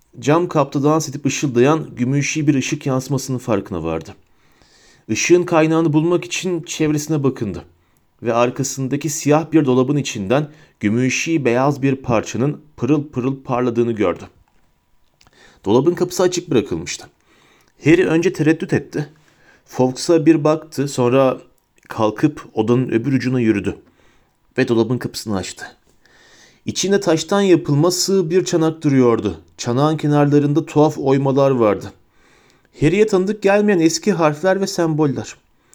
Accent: native